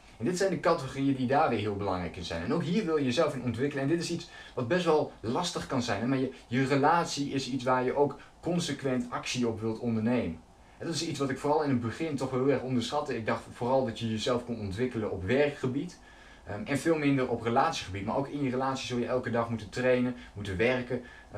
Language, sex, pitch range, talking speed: Dutch, male, 110-140 Hz, 240 wpm